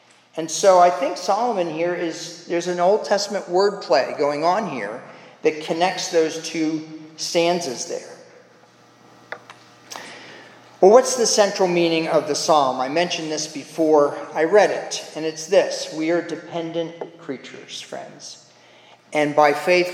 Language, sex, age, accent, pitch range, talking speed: English, male, 40-59, American, 150-195 Hz, 140 wpm